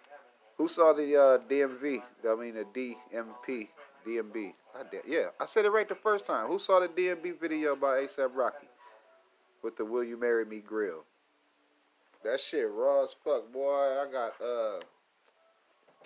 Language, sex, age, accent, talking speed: English, male, 30-49, American, 155 wpm